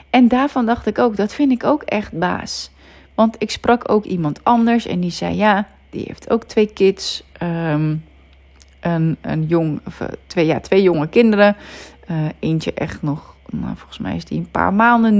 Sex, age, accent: female, 30-49, Dutch